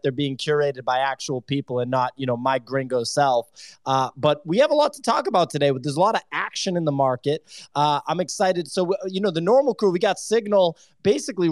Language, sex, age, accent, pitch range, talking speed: English, male, 20-39, American, 140-165 Hz, 230 wpm